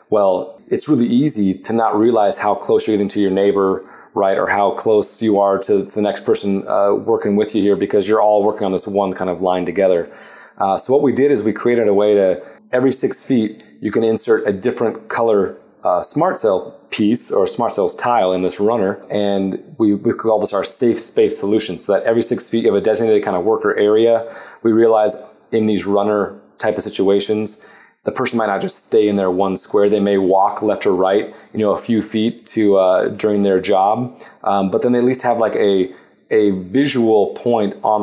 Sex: male